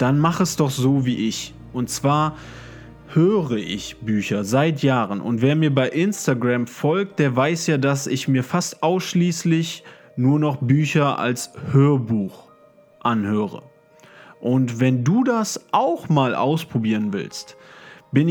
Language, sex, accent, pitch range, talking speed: German, male, German, 125-170 Hz, 140 wpm